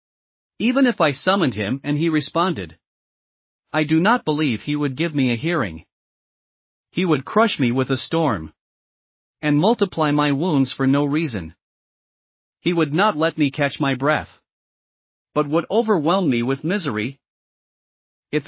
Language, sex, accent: English, male, American